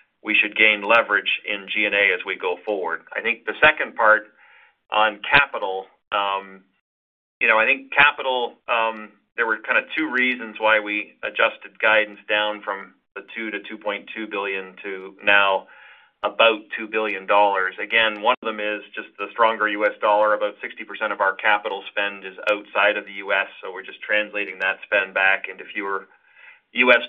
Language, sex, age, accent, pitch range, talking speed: English, male, 40-59, American, 100-110 Hz, 170 wpm